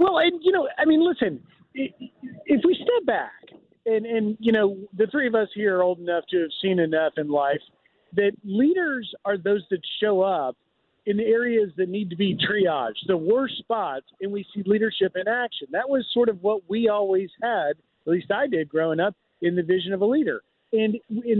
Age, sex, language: 40-59, male, English